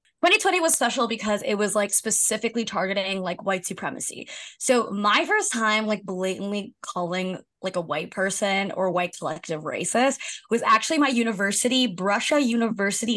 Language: English